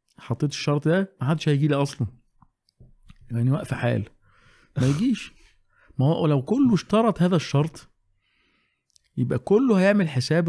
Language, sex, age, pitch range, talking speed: Arabic, male, 50-69, 115-150 Hz, 135 wpm